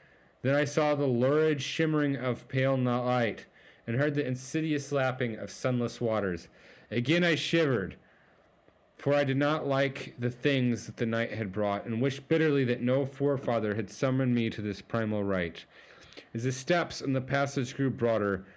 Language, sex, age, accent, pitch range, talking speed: English, male, 40-59, American, 120-150 Hz, 175 wpm